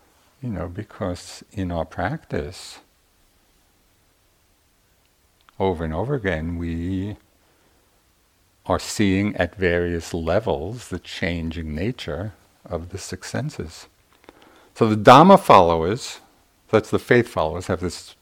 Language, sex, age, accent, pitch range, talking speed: English, male, 50-69, American, 85-105 Hz, 110 wpm